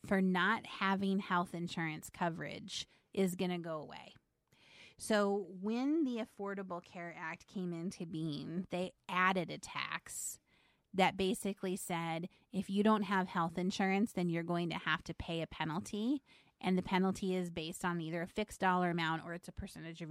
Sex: female